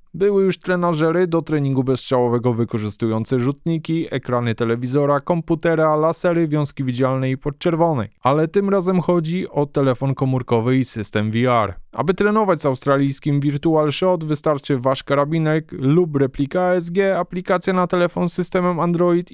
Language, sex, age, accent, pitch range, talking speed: Polish, male, 20-39, native, 130-170 Hz, 135 wpm